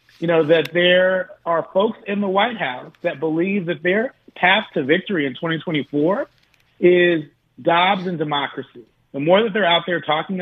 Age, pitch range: 40-59, 150-180 Hz